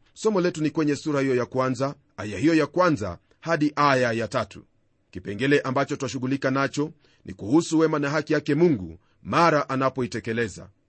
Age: 40-59